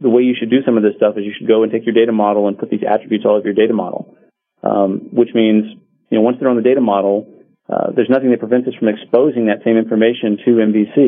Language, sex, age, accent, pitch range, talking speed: English, male, 30-49, American, 105-115 Hz, 275 wpm